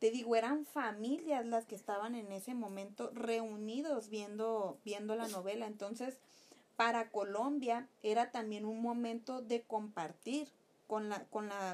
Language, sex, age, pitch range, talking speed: Spanish, female, 30-49, 215-265 Hz, 145 wpm